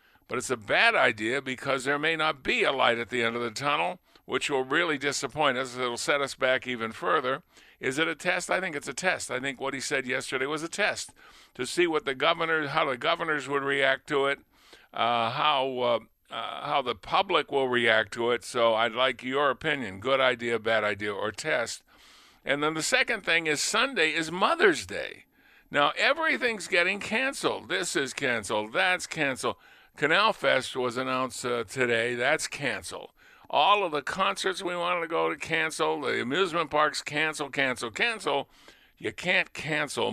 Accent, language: American, English